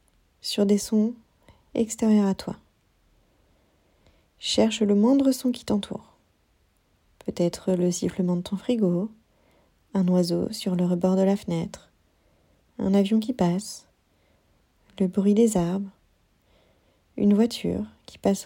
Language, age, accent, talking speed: French, 40-59, French, 125 wpm